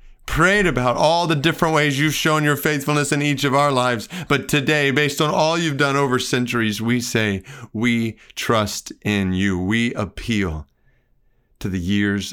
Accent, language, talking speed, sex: American, English, 170 wpm, male